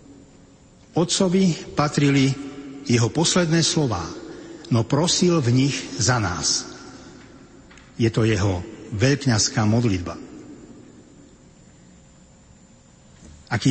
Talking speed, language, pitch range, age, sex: 75 wpm, Slovak, 110-140 Hz, 60-79, male